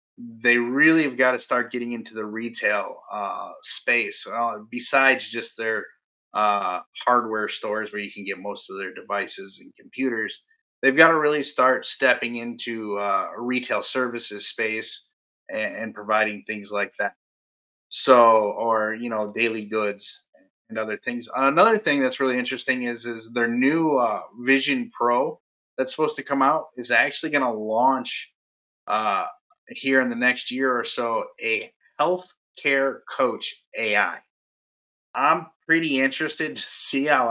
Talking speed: 155 wpm